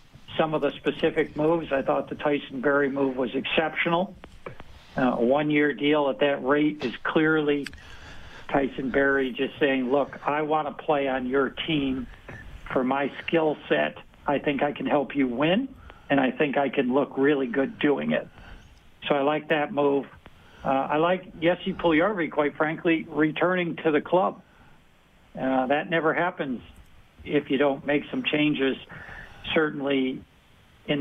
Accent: American